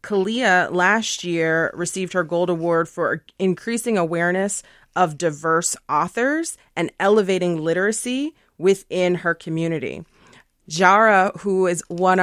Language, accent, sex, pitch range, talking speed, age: English, American, female, 165-190 Hz, 115 wpm, 30-49